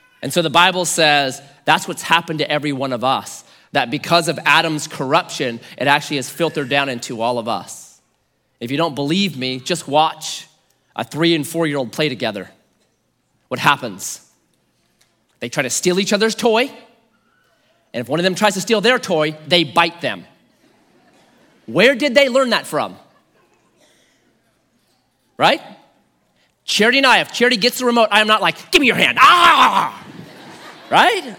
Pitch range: 145-235 Hz